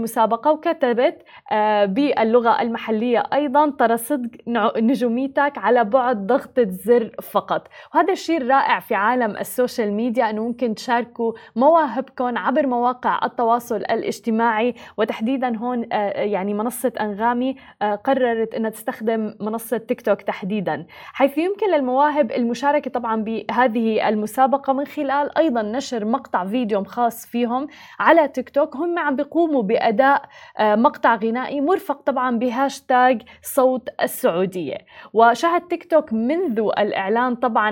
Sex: female